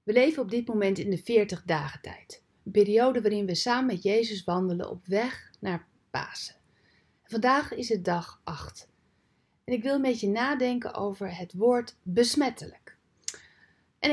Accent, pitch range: Dutch, 190-240 Hz